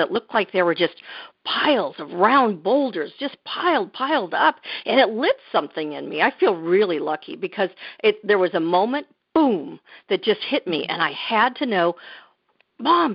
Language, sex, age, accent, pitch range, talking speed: English, female, 50-69, American, 180-245 Hz, 185 wpm